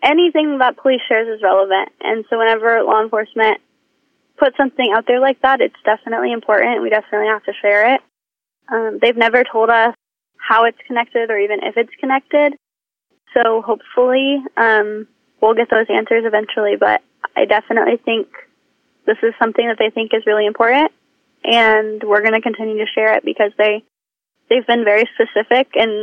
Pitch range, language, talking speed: 210-245 Hz, English, 175 wpm